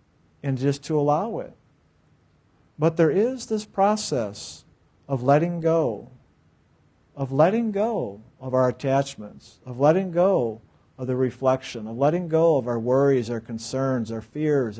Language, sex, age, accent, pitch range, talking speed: English, male, 50-69, American, 125-175 Hz, 140 wpm